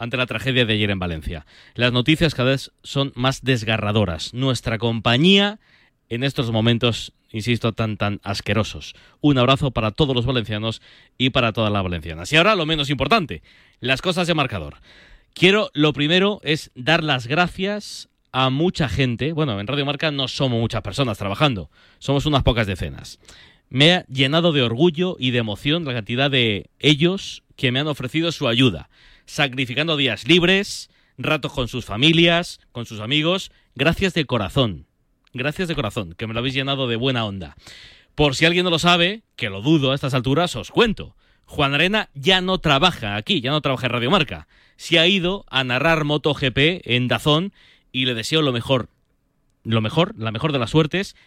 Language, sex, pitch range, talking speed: Spanish, male, 115-160 Hz, 180 wpm